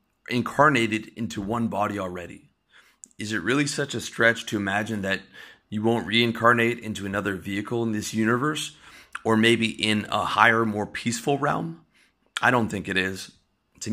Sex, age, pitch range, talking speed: male, 30-49, 95-115 Hz, 160 wpm